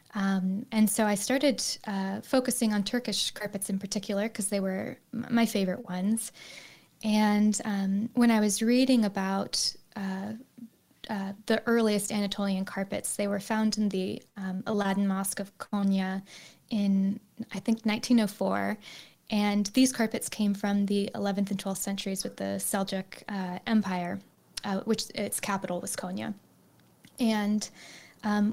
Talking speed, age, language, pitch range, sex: 145 wpm, 10-29, English, 195-220 Hz, female